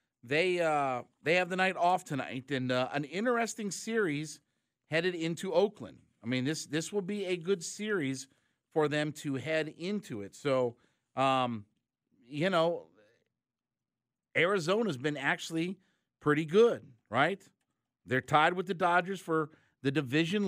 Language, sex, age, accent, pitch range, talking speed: English, male, 50-69, American, 120-170 Hz, 145 wpm